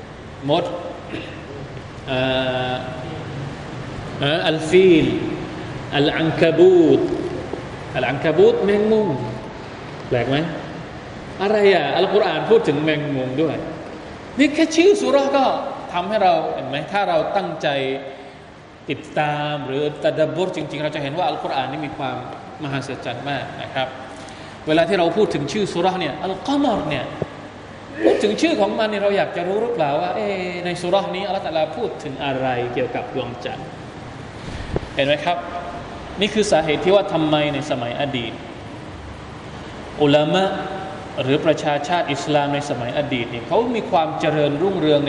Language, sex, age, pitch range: Thai, male, 20-39, 140-190 Hz